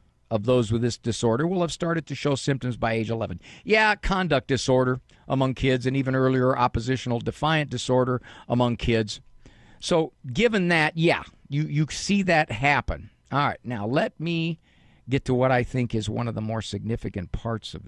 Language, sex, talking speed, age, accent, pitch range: English, male, 180 wpm, 50-69, American, 100-130 Hz